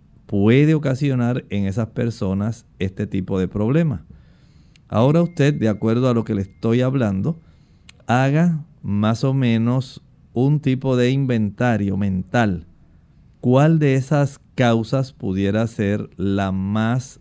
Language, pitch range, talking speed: Spanish, 100-135 Hz, 125 wpm